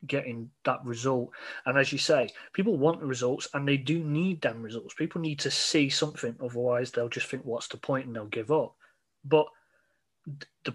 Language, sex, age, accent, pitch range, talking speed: English, male, 30-49, British, 130-160 Hz, 195 wpm